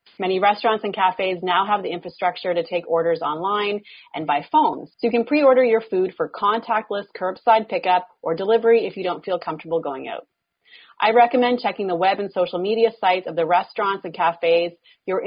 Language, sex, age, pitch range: English, female, 30-49, 170-220 Hz